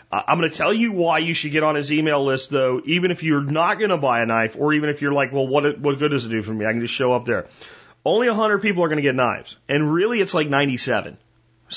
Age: 30-49